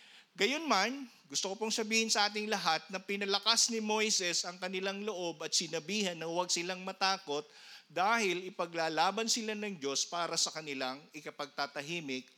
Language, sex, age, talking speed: Filipino, male, 50-69, 150 wpm